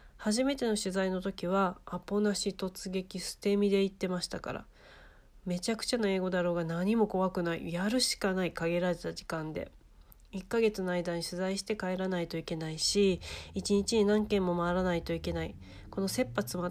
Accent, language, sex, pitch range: native, Japanese, female, 170-205 Hz